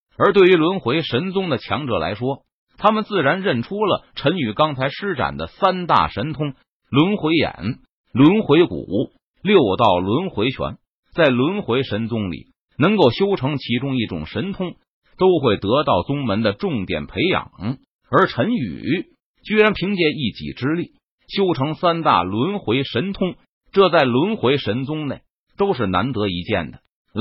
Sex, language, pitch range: male, Chinese, 115-180 Hz